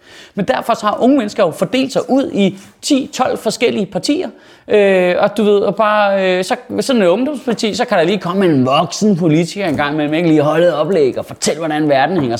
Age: 30-49